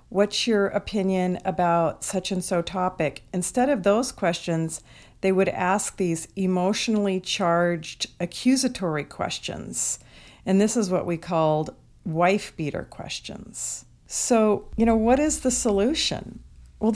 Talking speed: 130 wpm